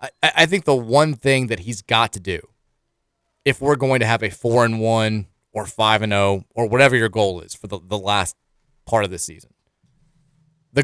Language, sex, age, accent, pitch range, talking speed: English, male, 30-49, American, 105-140 Hz, 205 wpm